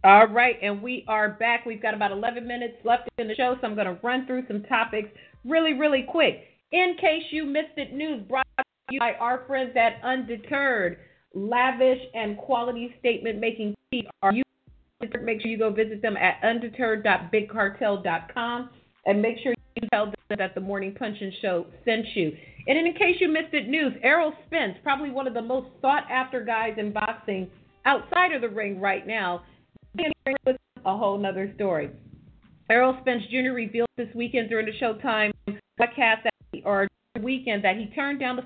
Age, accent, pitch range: 40-59, American, 205-255 Hz